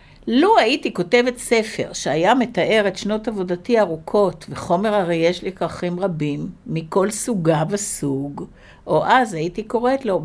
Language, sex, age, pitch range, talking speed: Hebrew, female, 60-79, 175-220 Hz, 140 wpm